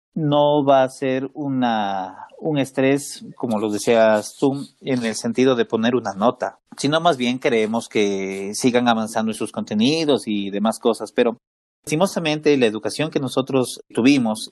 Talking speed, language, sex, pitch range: 155 wpm, Spanish, male, 120-175 Hz